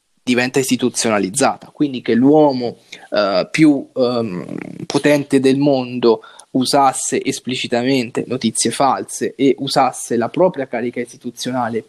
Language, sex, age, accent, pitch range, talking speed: Italian, male, 20-39, native, 120-140 Hz, 105 wpm